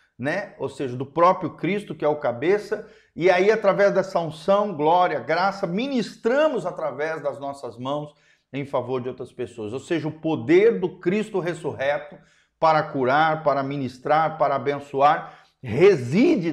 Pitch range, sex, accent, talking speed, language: 135-190 Hz, male, Brazilian, 150 wpm, Portuguese